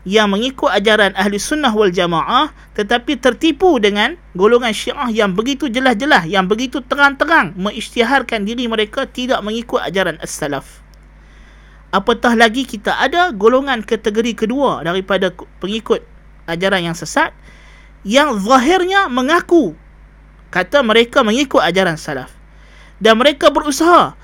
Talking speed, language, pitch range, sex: 120 wpm, Malay, 190-260 Hz, male